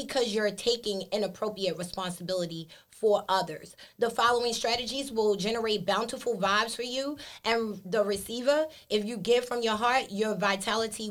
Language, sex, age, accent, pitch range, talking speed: English, female, 20-39, American, 205-270 Hz, 145 wpm